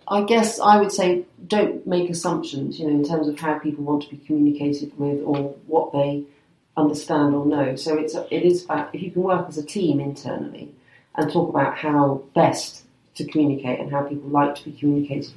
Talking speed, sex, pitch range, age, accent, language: 210 wpm, female, 145-170 Hz, 40-59, British, English